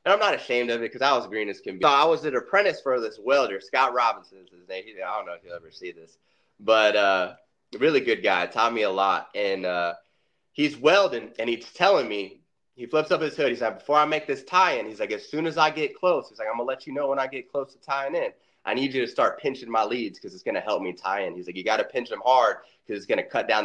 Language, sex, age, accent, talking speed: English, male, 20-39, American, 295 wpm